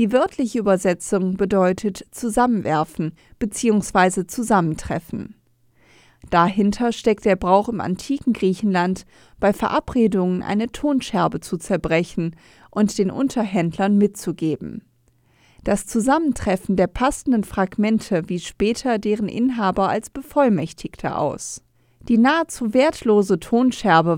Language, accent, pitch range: German, German, 175-235 Hz